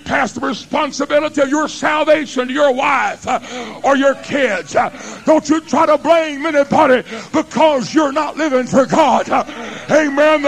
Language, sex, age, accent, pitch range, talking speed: English, female, 50-69, American, 235-295 Hz, 145 wpm